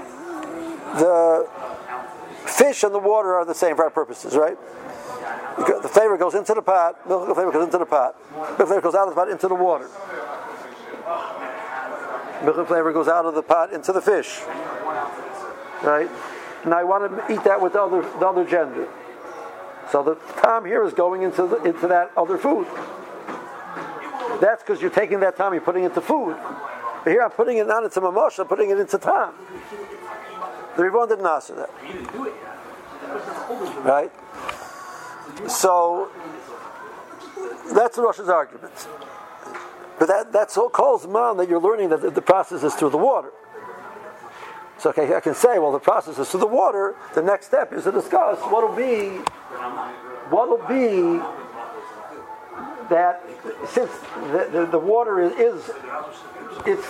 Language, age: English, 60-79